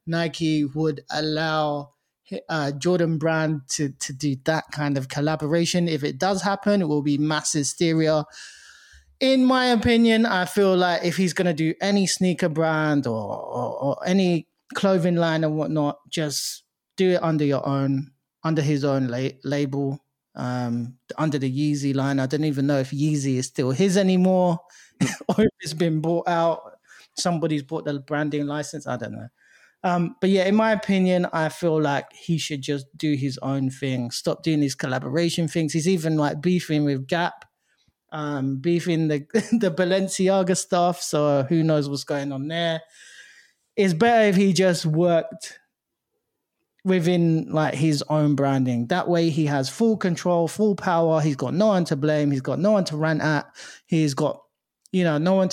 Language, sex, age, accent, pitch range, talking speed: English, male, 20-39, British, 145-180 Hz, 175 wpm